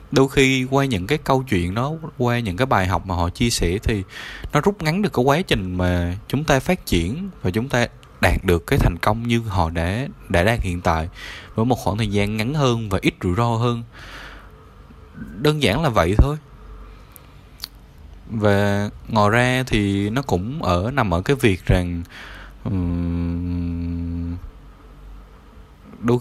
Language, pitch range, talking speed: Vietnamese, 90-125 Hz, 170 wpm